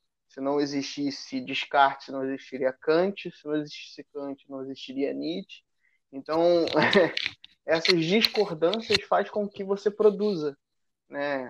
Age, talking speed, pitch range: 20-39, 120 wpm, 150-220 Hz